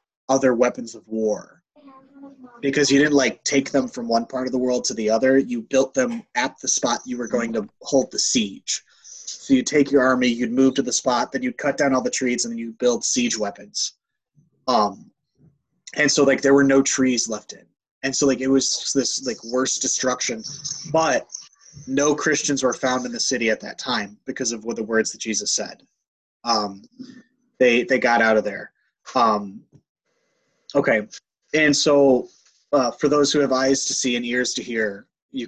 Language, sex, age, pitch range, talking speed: English, male, 20-39, 115-150 Hz, 200 wpm